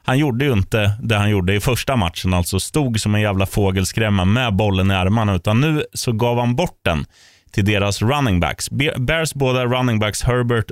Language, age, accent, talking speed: Swedish, 30-49, native, 200 wpm